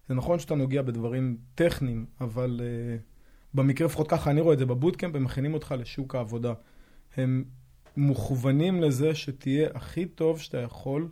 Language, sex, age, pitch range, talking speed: Hebrew, male, 20-39, 120-145 Hz, 155 wpm